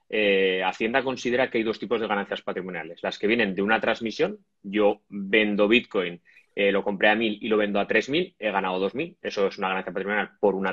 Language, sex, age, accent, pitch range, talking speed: Spanish, male, 30-49, Spanish, 100-140 Hz, 225 wpm